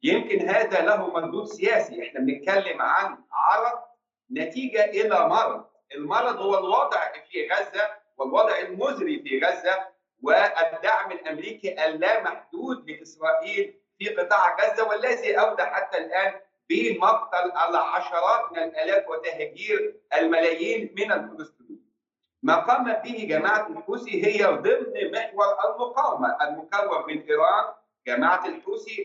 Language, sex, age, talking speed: Arabic, male, 50-69, 110 wpm